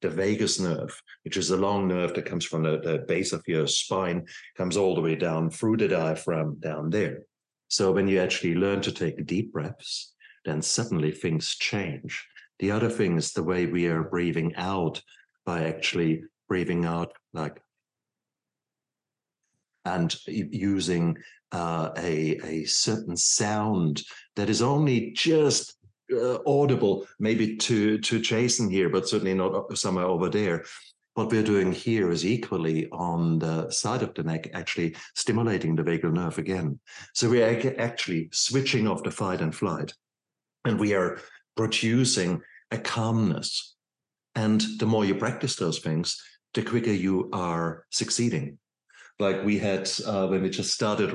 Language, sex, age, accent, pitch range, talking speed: English, male, 50-69, German, 85-110 Hz, 155 wpm